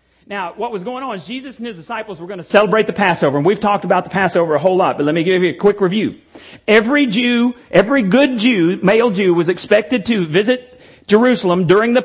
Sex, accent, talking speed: male, American, 235 wpm